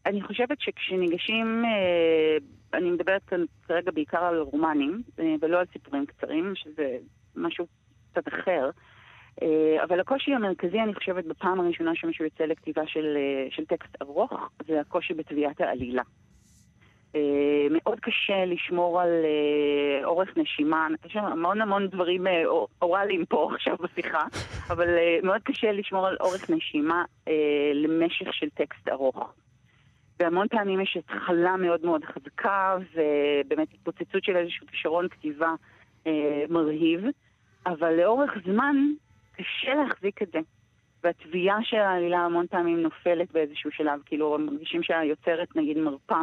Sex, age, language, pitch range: female, 40-59, Hebrew, 150-185 Hz